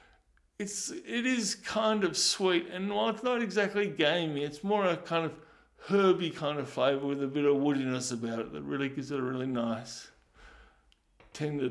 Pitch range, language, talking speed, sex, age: 135-160 Hz, English, 185 wpm, male, 60-79